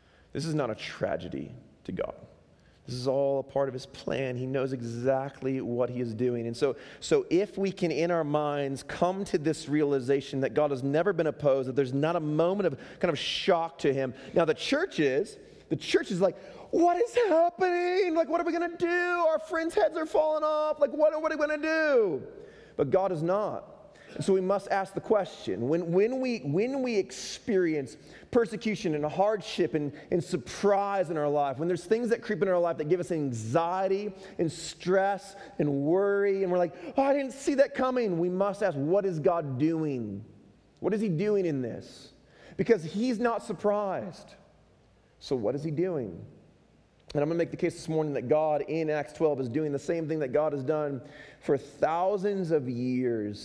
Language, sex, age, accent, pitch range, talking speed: English, male, 30-49, American, 140-200 Hz, 205 wpm